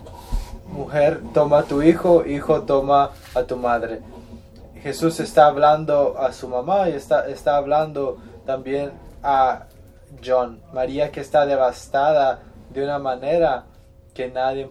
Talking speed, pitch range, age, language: 130 wpm, 115-150 Hz, 20-39, English